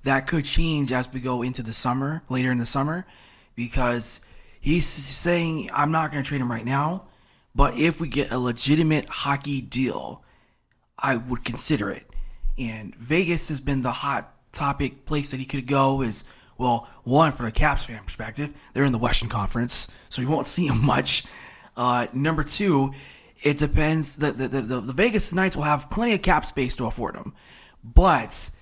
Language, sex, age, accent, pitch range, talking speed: English, male, 20-39, American, 125-150 Hz, 180 wpm